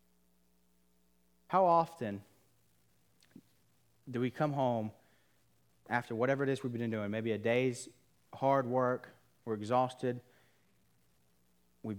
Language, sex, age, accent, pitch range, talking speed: English, male, 30-49, American, 95-125 Hz, 105 wpm